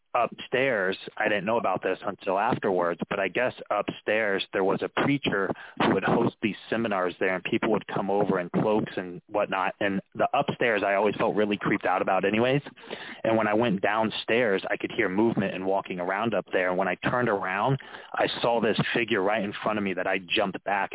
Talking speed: 210 wpm